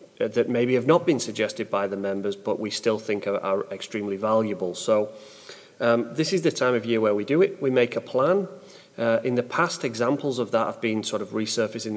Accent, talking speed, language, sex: British, 225 wpm, English, male